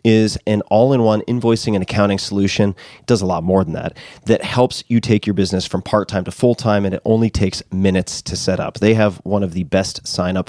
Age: 30-49